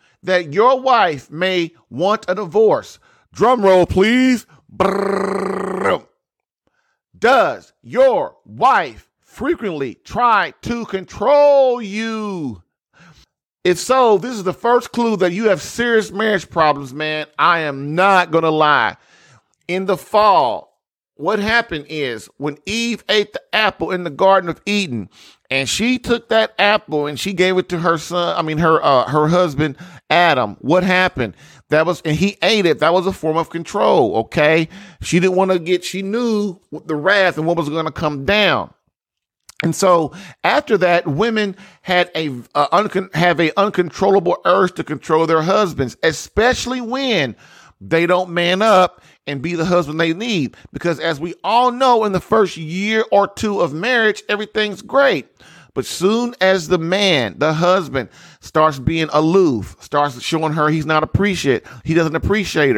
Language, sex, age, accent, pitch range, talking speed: English, male, 40-59, American, 155-205 Hz, 160 wpm